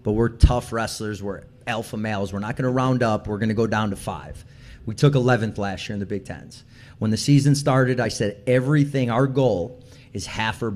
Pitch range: 115-135 Hz